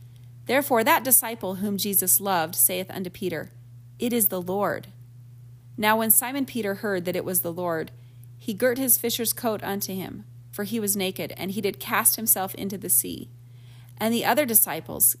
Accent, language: American, English